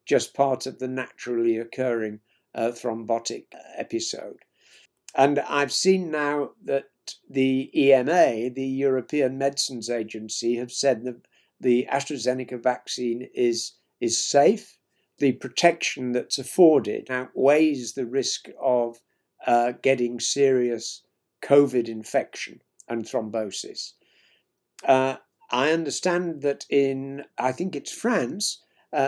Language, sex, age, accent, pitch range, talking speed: English, male, 60-79, British, 125-145 Hz, 110 wpm